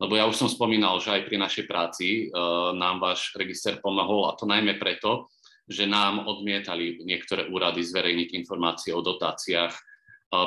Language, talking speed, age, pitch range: Slovak, 165 wpm, 30-49, 90-105 Hz